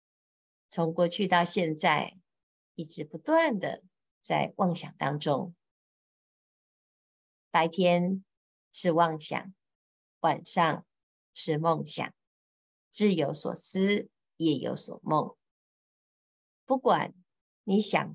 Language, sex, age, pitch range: Chinese, female, 50-69, 155-195 Hz